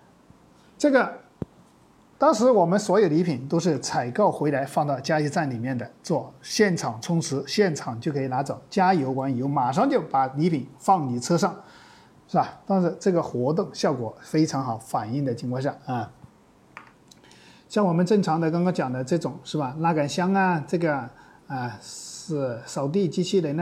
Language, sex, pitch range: Chinese, male, 150-190 Hz